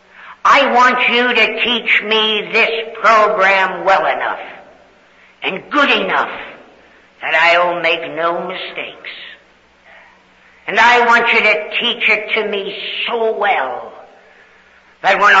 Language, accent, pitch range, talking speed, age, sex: English, American, 175-215 Hz, 120 wpm, 60-79, female